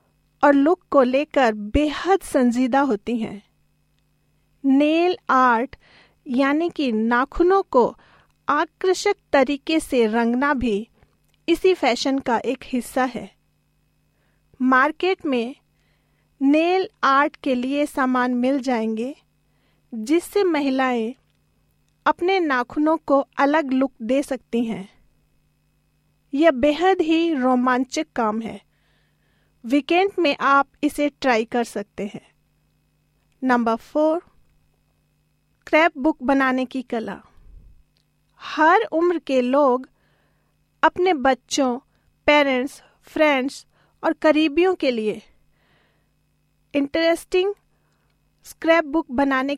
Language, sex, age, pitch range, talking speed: Hindi, female, 40-59, 245-315 Hz, 100 wpm